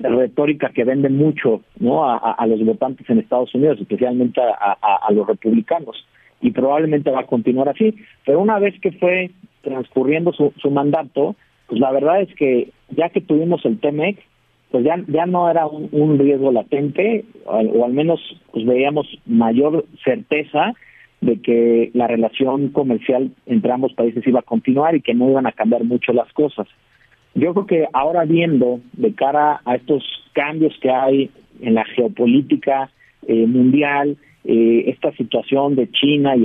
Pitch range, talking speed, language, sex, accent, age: 125-165 Hz, 170 wpm, Spanish, male, Mexican, 50-69